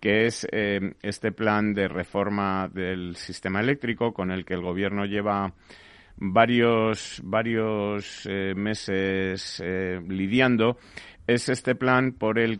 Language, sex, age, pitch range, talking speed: Spanish, male, 30-49, 90-105 Hz, 130 wpm